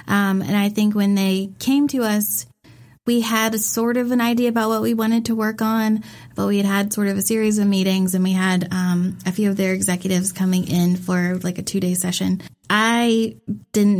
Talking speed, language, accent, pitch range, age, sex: 225 wpm, English, American, 185-220 Hz, 20-39, female